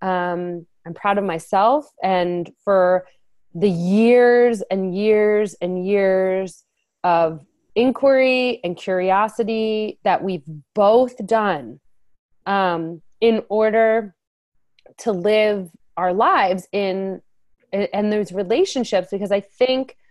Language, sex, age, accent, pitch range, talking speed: English, female, 30-49, American, 180-225 Hz, 105 wpm